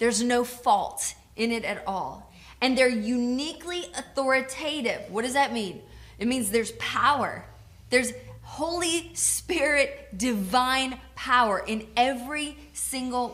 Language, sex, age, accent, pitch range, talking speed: English, female, 20-39, American, 195-250 Hz, 120 wpm